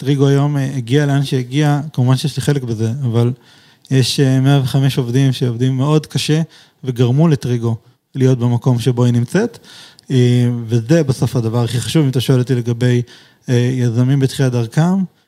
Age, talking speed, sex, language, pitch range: 20-39, 145 wpm, male, Hebrew, 125-150 Hz